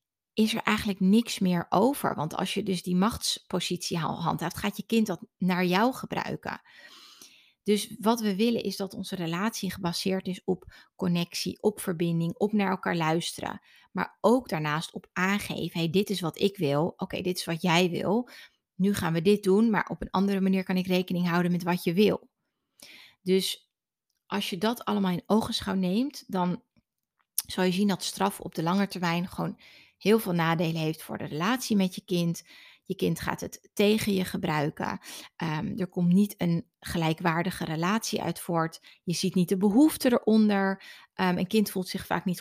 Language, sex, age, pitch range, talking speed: Dutch, female, 30-49, 175-210 Hz, 185 wpm